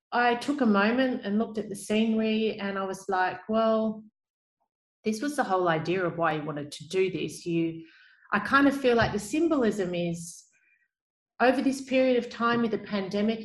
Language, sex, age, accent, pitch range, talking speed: English, female, 30-49, Australian, 175-225 Hz, 190 wpm